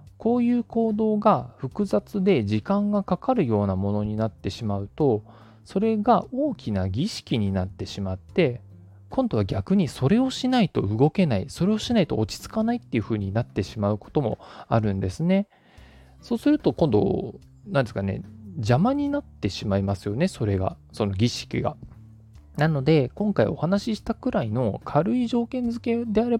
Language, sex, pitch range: Japanese, male, 105-170 Hz